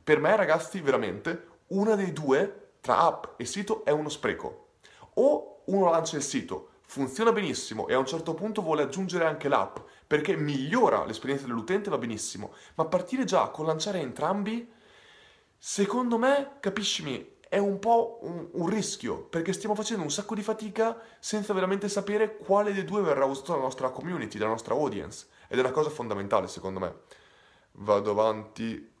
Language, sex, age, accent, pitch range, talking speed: Italian, male, 30-49, native, 125-200 Hz, 170 wpm